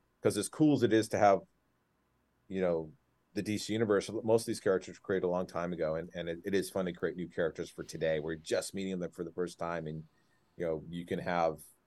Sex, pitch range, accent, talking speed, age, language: male, 85-115 Hz, American, 250 wpm, 30-49, English